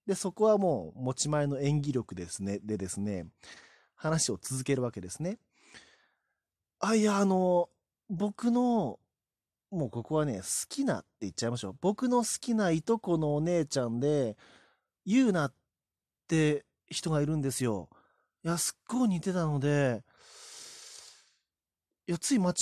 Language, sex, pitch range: Japanese, male, 115-185 Hz